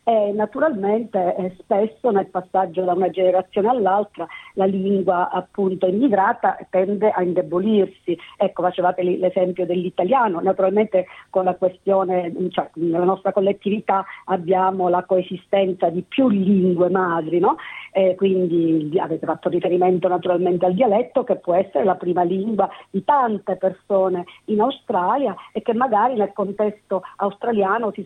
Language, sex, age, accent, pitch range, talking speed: Italian, female, 40-59, native, 185-215 Hz, 130 wpm